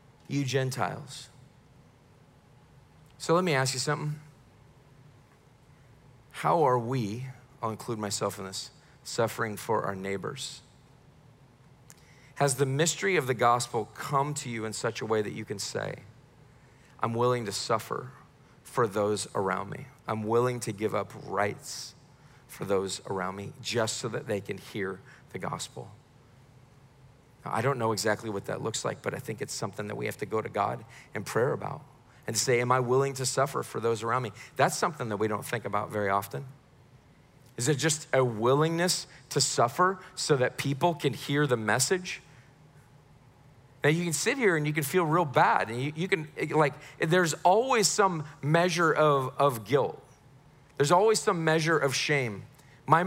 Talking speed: 170 wpm